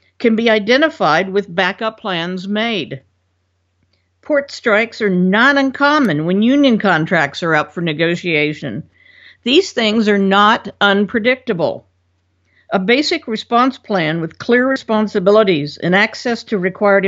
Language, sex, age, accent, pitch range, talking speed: English, female, 50-69, American, 155-230 Hz, 125 wpm